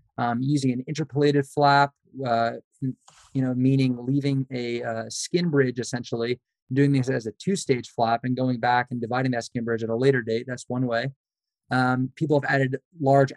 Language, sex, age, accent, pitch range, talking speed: English, male, 20-39, American, 125-140 Hz, 190 wpm